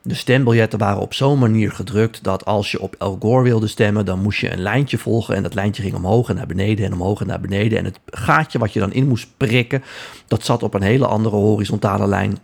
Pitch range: 100-125 Hz